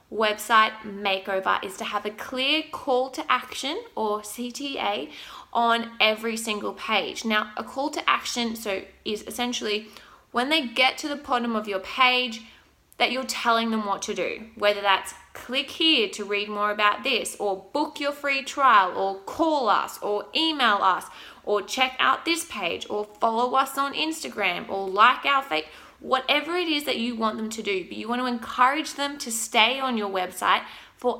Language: English